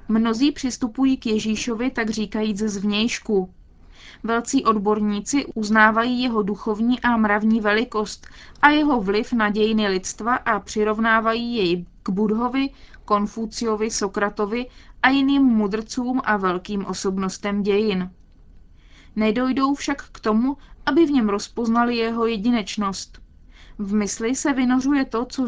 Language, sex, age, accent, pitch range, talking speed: Czech, female, 20-39, native, 205-245 Hz, 120 wpm